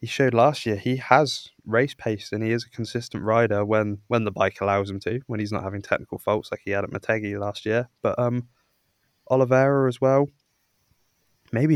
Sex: male